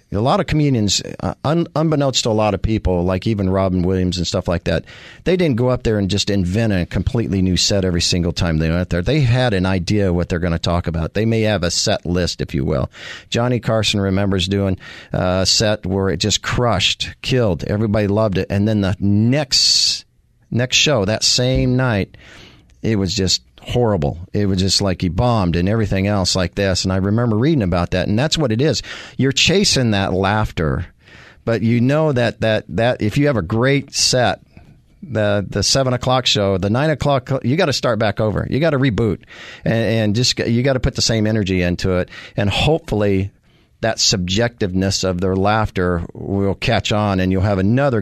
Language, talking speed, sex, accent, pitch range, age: English, 205 wpm, male, American, 95-120 Hz, 50-69